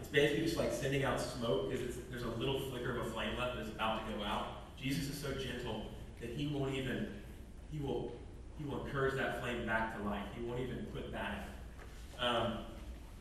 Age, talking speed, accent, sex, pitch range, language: 30-49, 200 wpm, American, male, 110-135 Hz, English